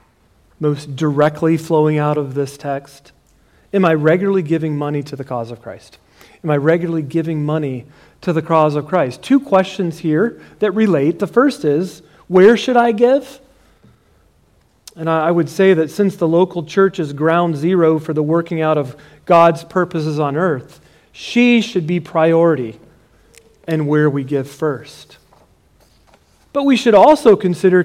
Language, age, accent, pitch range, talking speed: English, 40-59, American, 150-195 Hz, 160 wpm